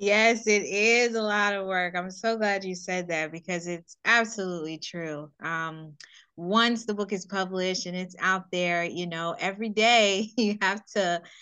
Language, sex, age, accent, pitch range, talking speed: English, female, 20-39, American, 165-205 Hz, 180 wpm